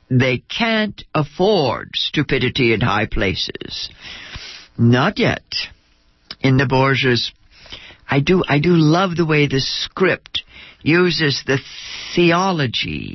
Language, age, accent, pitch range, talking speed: English, 60-79, American, 120-175 Hz, 110 wpm